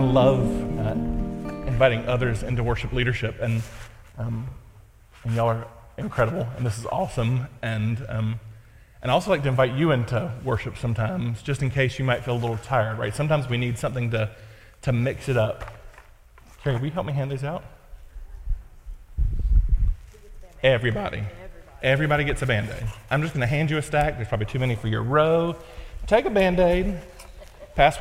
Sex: male